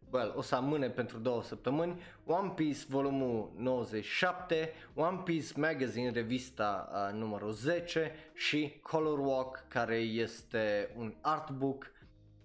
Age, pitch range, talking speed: 20-39, 115-150 Hz, 120 wpm